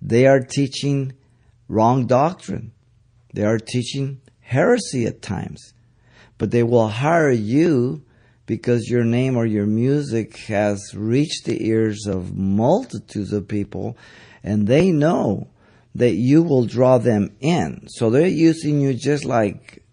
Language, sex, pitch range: English, male, 110-135 Hz